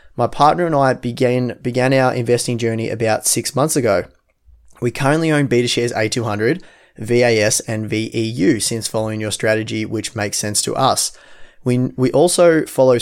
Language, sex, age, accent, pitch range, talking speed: English, male, 20-39, Australian, 110-130 Hz, 155 wpm